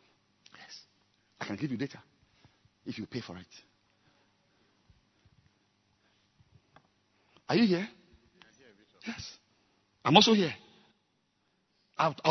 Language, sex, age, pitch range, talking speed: English, male, 50-69, 135-230 Hz, 90 wpm